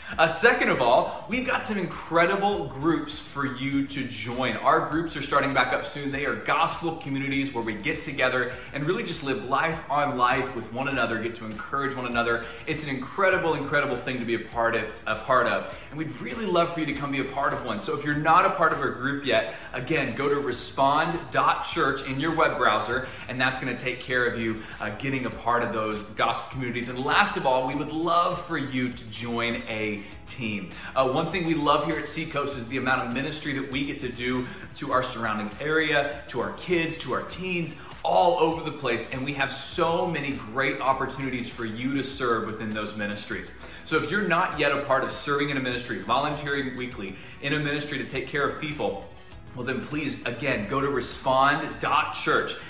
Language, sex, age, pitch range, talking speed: English, male, 20-39, 120-150 Hz, 215 wpm